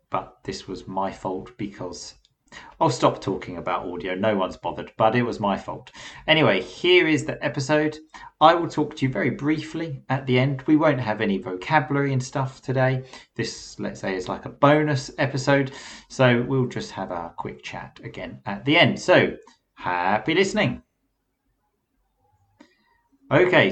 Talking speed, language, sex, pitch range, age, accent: 165 wpm, English, male, 100-140 Hz, 40-59, British